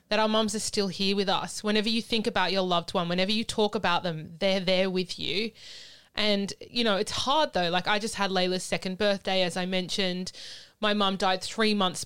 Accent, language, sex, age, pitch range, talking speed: Australian, English, female, 20-39, 185-215 Hz, 225 wpm